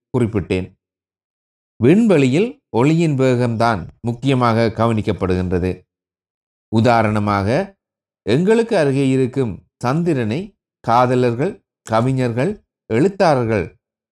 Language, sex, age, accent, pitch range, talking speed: Tamil, male, 30-49, native, 100-135 Hz, 60 wpm